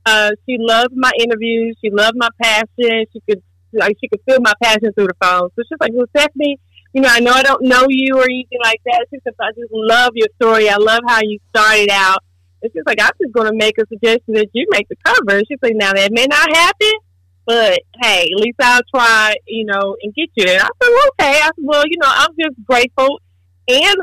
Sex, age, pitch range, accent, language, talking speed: female, 30-49, 205-250 Hz, American, English, 240 wpm